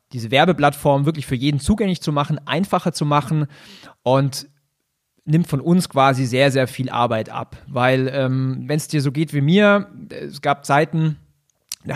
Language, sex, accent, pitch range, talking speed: German, male, German, 125-150 Hz, 165 wpm